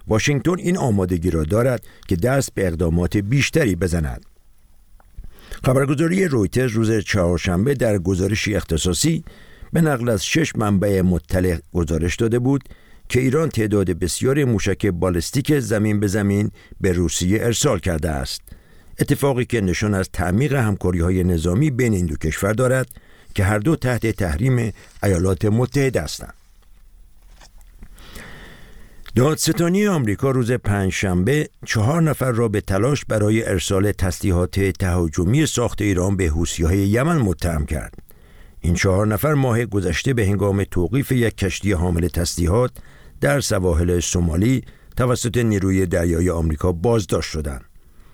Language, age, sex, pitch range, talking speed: Persian, 50-69, male, 90-120 Hz, 125 wpm